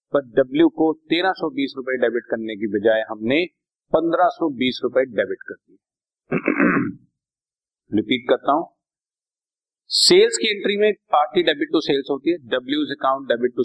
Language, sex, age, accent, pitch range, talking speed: Hindi, male, 40-59, native, 105-170 Hz, 135 wpm